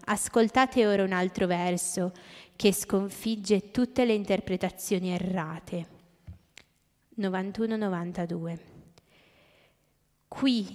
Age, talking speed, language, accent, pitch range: 20-39, 75 wpm, Italian, native, 185-225 Hz